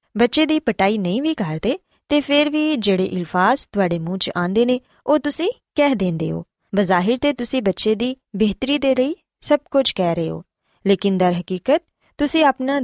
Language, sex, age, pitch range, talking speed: Punjabi, female, 20-39, 185-275 Hz, 180 wpm